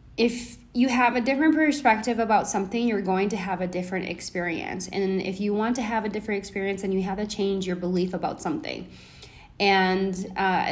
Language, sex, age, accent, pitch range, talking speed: English, female, 20-39, American, 180-215 Hz, 195 wpm